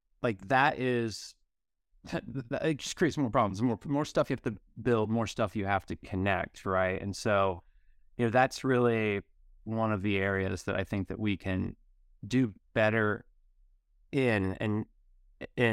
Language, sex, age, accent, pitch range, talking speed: English, male, 30-49, American, 95-120 Hz, 165 wpm